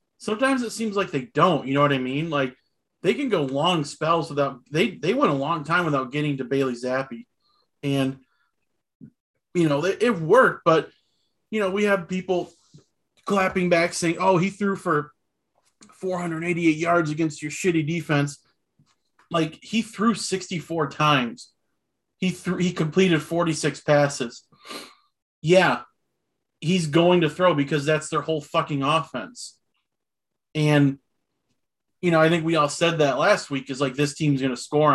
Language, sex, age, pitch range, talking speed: English, male, 30-49, 135-170 Hz, 160 wpm